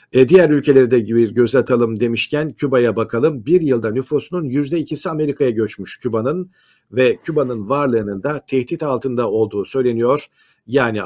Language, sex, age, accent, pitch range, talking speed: Turkish, male, 50-69, native, 115-145 Hz, 135 wpm